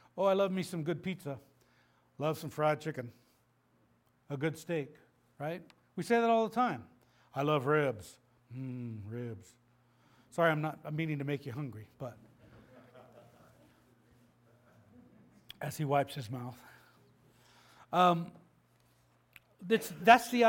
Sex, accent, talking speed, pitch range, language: male, American, 130 wpm, 120-190 Hz, English